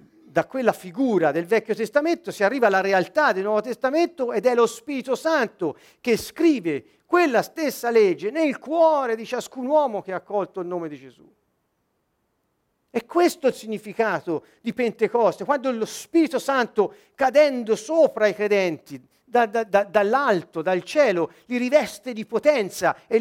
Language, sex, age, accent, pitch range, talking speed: Italian, male, 50-69, native, 185-285 Hz, 150 wpm